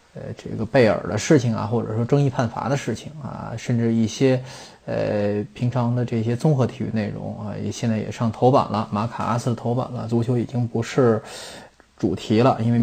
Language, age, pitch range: Chinese, 20-39, 110-135 Hz